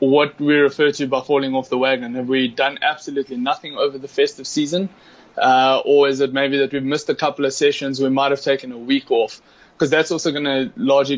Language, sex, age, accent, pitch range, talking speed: English, male, 20-39, South African, 135-160 Hz, 230 wpm